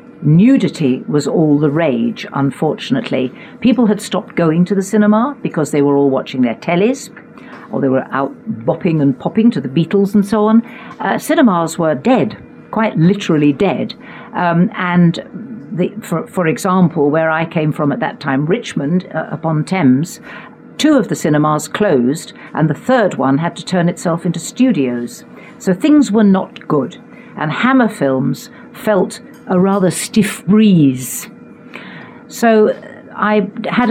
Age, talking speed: 60-79, 155 wpm